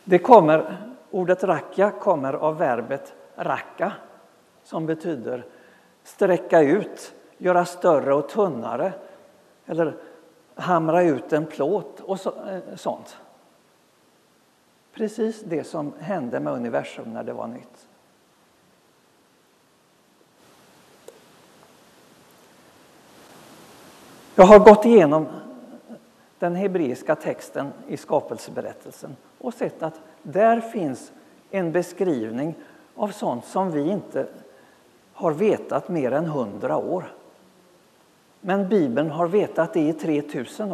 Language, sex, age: Swedish, male, 60-79